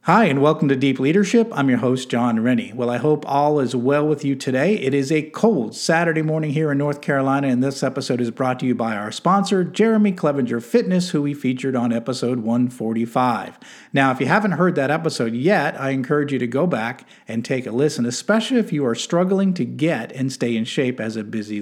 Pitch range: 125-175 Hz